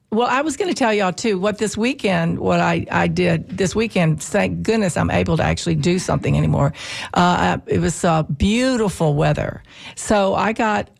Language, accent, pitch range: English, American, 160-205 Hz